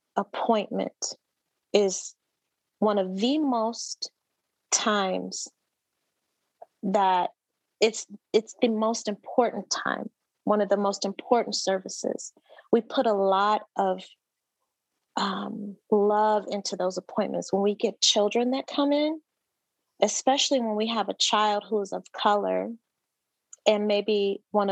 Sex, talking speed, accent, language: female, 120 wpm, American, English